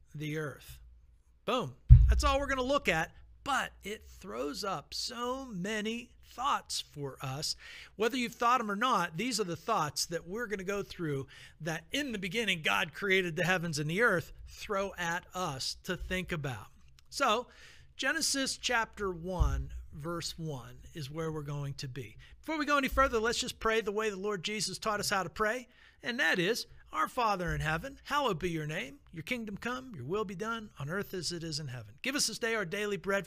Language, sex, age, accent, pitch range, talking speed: English, male, 50-69, American, 155-220 Hz, 205 wpm